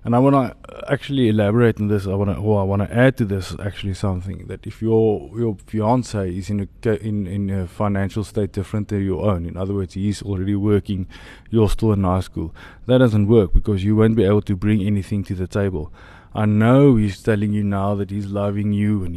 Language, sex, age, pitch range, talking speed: English, male, 20-39, 95-110 Hz, 225 wpm